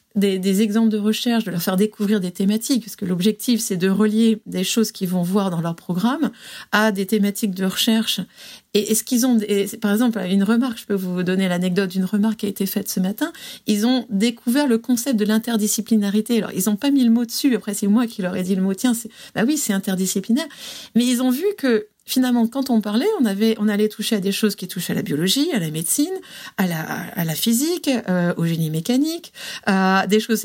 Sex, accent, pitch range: female, French, 195-235 Hz